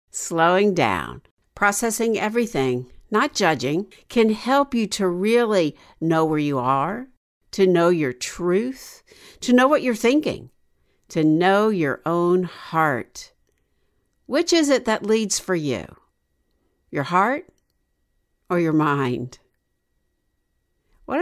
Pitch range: 155-220 Hz